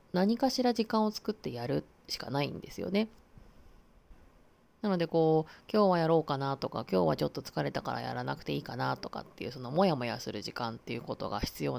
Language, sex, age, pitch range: Japanese, female, 20-39, 145-195 Hz